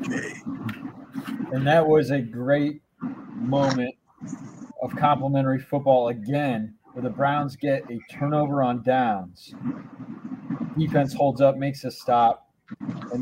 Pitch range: 125-160 Hz